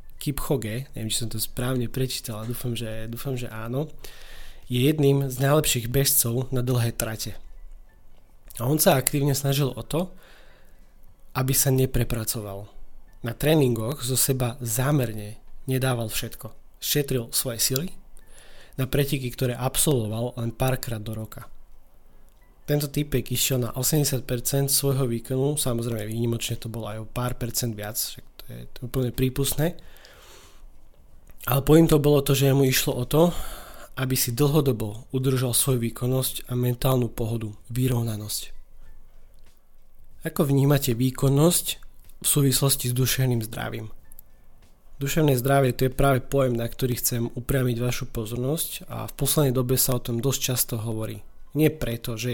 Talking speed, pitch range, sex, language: 140 wpm, 115-140 Hz, male, Slovak